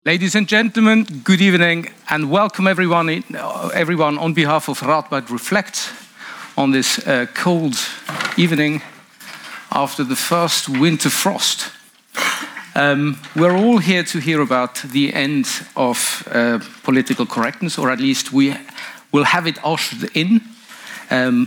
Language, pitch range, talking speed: Dutch, 130-190 Hz, 135 wpm